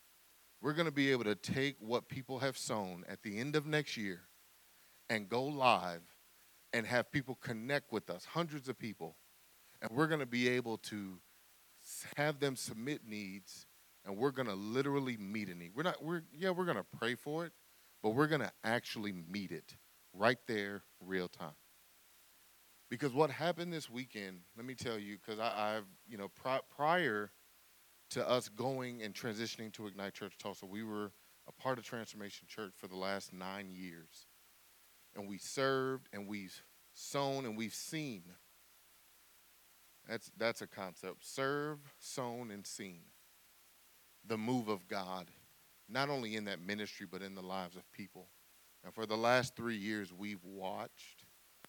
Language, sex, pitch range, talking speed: English, male, 100-130 Hz, 170 wpm